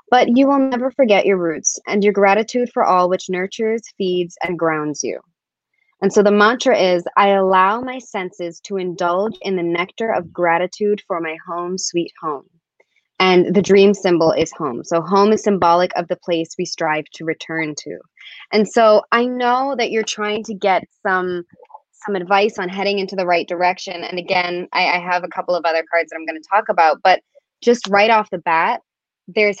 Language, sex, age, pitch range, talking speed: English, female, 20-39, 175-220 Hz, 200 wpm